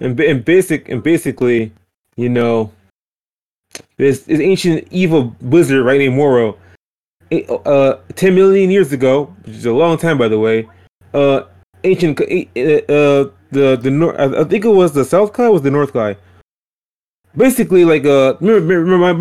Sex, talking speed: male, 160 wpm